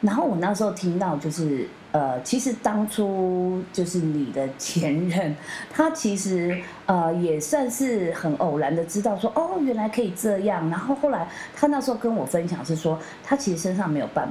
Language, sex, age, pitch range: Chinese, female, 30-49, 155-230 Hz